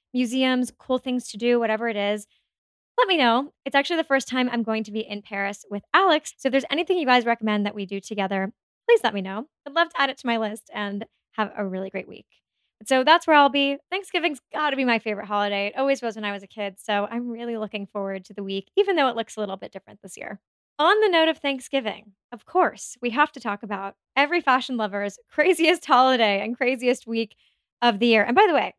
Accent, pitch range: American, 205-270 Hz